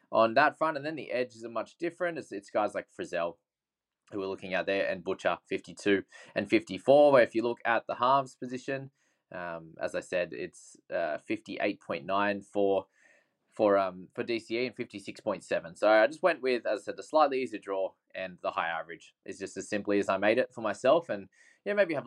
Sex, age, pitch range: male, 20-39, 95-125 Hz